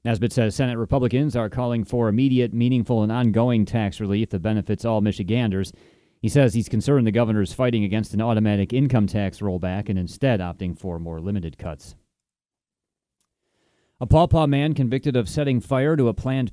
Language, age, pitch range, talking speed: English, 30-49, 100-120 Hz, 175 wpm